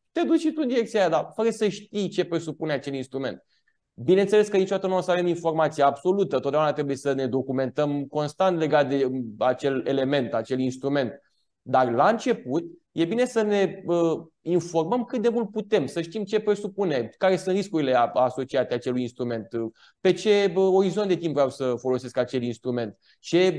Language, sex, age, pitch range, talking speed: Romanian, male, 20-39, 135-195 Hz, 175 wpm